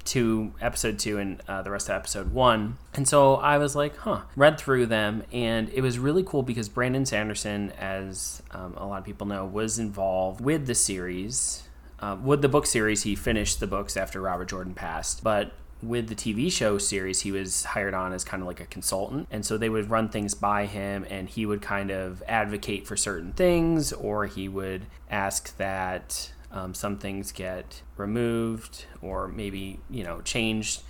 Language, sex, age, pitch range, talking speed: English, male, 20-39, 95-115 Hz, 195 wpm